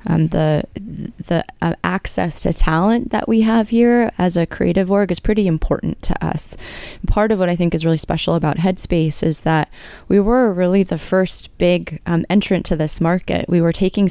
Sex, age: female, 20-39